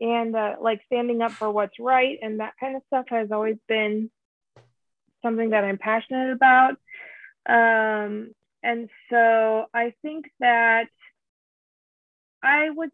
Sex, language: female, English